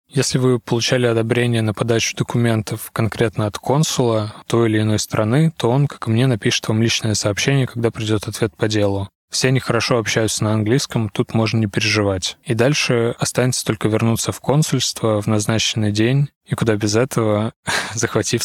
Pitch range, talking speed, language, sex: 105-125 Hz, 170 wpm, Russian, male